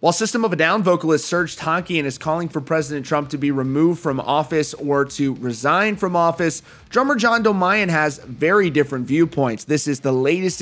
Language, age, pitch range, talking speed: English, 30-49, 140-170 Hz, 200 wpm